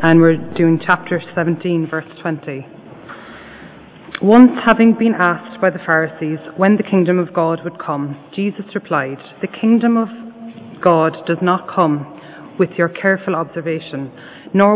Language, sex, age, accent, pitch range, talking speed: English, female, 30-49, Irish, 160-190 Hz, 140 wpm